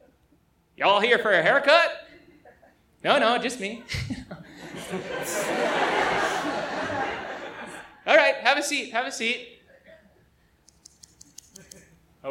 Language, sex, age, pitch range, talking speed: English, male, 30-49, 185-290 Hz, 90 wpm